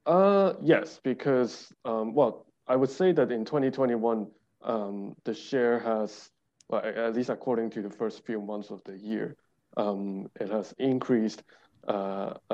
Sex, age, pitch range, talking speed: male, 20-39, 105-135 Hz, 155 wpm